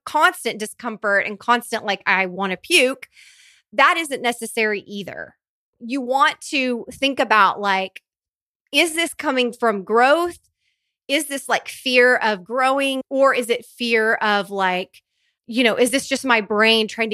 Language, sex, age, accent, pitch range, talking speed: English, female, 30-49, American, 205-255 Hz, 155 wpm